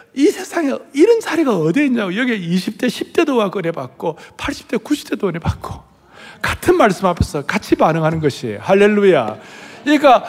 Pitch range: 150-220 Hz